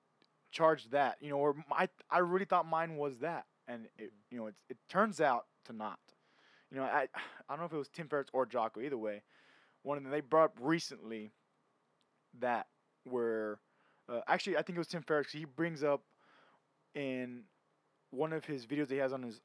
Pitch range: 125-160 Hz